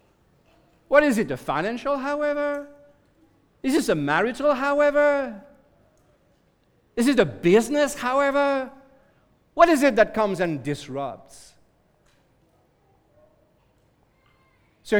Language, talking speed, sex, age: English, 95 wpm, male, 50-69